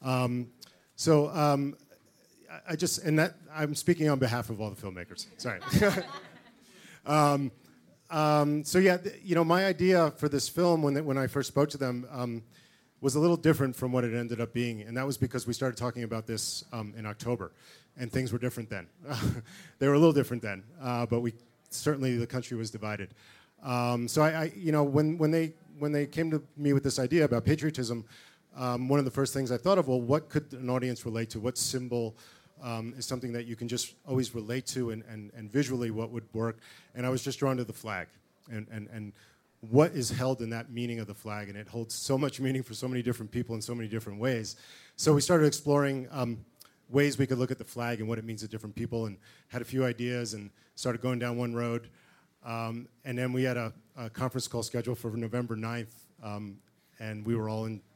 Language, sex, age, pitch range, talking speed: English, male, 40-59, 115-145 Hz, 225 wpm